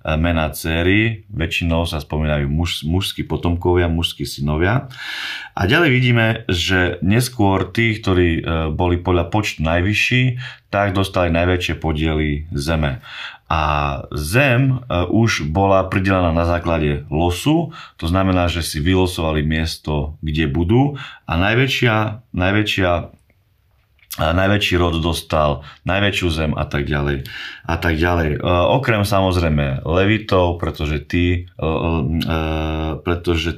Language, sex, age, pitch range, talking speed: Slovak, male, 30-49, 80-105 Hz, 110 wpm